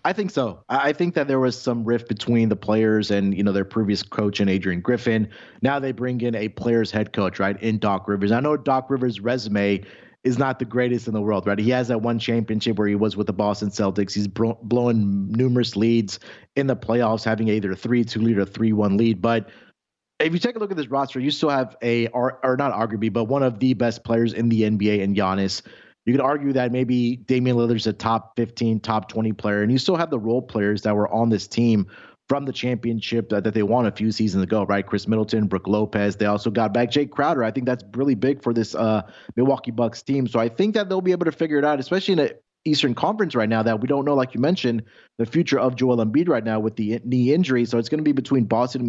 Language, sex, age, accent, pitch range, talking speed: English, male, 30-49, American, 105-130 Hz, 255 wpm